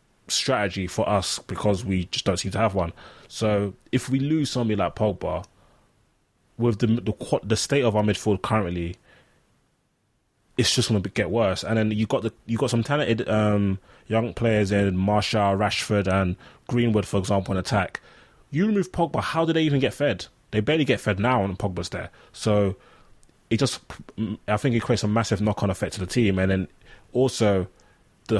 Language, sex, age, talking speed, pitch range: English, male, 20-39, 185 wpm, 100-115 Hz